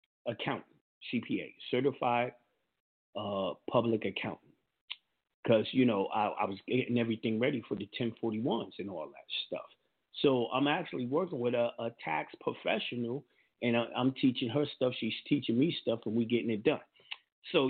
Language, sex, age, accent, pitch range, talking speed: English, male, 40-59, American, 110-145 Hz, 155 wpm